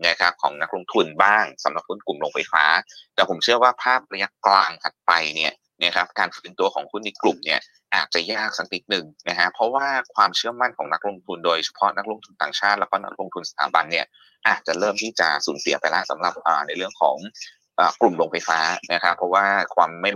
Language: Thai